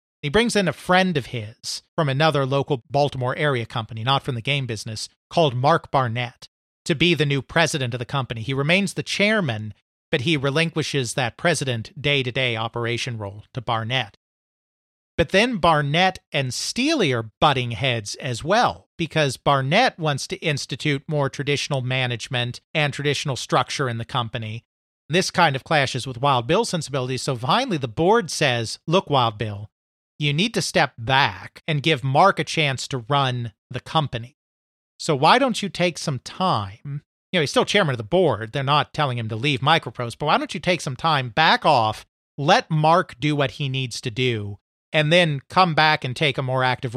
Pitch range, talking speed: 125-160 Hz, 185 wpm